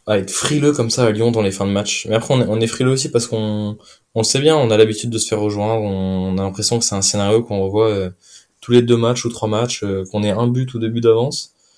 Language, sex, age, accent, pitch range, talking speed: French, male, 20-39, French, 100-120 Hz, 300 wpm